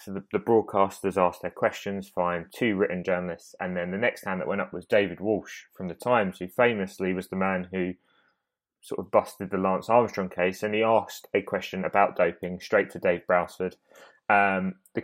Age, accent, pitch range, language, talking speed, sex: 20-39, British, 95-110 Hz, English, 200 wpm, male